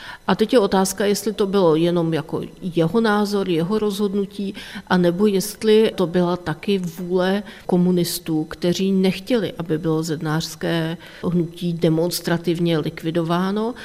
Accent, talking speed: native, 115 wpm